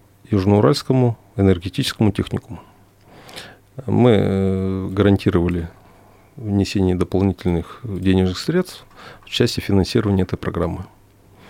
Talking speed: 75 wpm